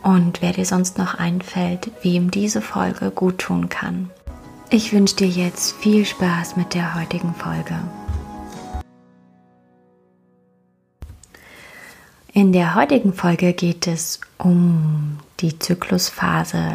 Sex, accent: female, German